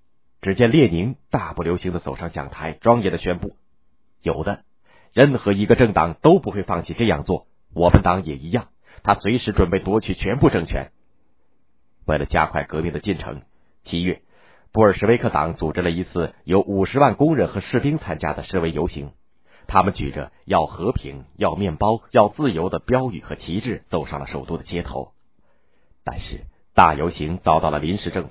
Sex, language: male, Chinese